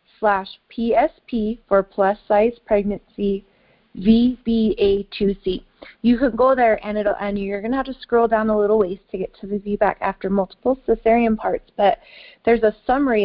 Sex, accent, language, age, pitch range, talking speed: female, American, English, 30-49, 200-235 Hz, 165 wpm